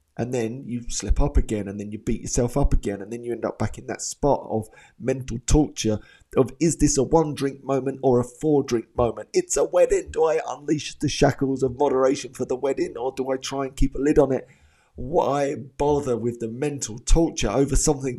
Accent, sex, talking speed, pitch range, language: British, male, 220 wpm, 110-145 Hz, English